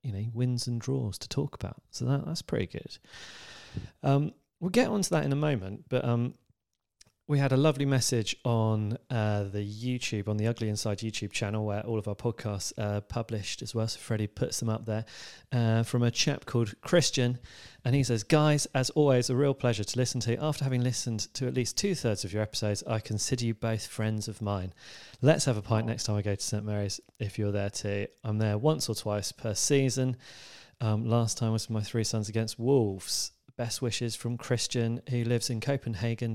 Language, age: English, 30-49